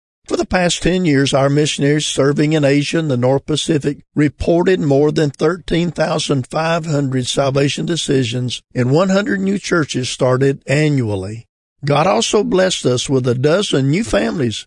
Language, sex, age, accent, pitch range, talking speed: English, male, 50-69, American, 130-165 Hz, 145 wpm